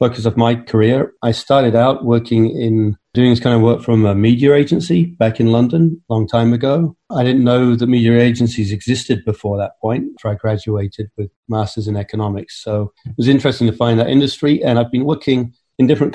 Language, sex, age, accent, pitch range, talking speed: English, male, 40-59, British, 110-125 Hz, 210 wpm